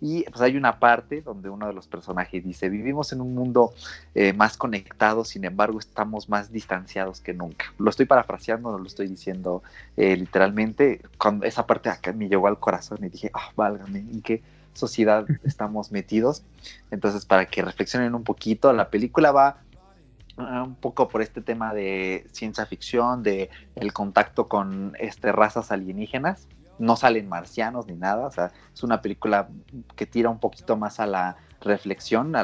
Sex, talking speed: male, 175 wpm